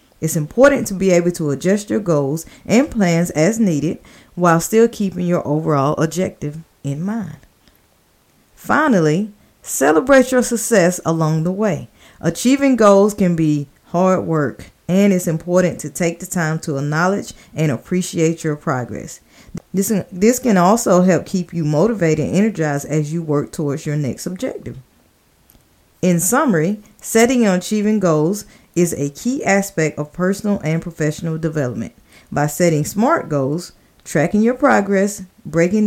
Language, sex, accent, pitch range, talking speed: English, female, American, 150-200 Hz, 145 wpm